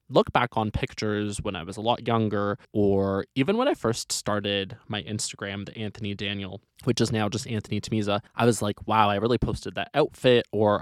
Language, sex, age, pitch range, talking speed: English, male, 20-39, 105-130 Hz, 205 wpm